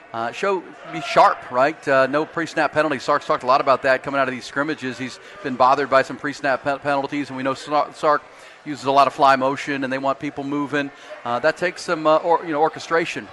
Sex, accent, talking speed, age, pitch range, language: male, American, 230 wpm, 40-59, 130-150 Hz, English